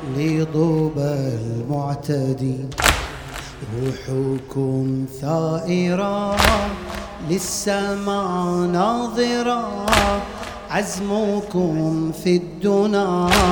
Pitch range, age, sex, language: 145-200 Hz, 30-49, male, Arabic